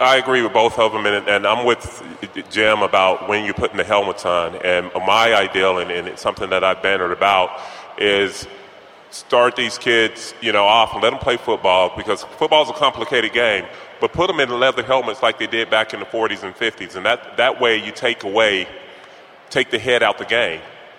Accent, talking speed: American, 215 wpm